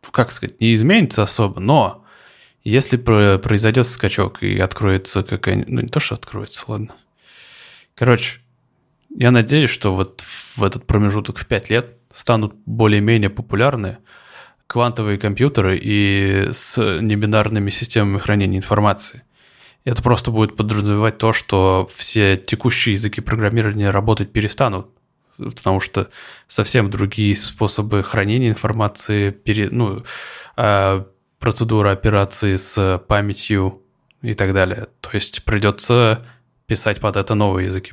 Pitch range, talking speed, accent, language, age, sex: 100-120 Hz, 120 wpm, native, Russian, 20-39, male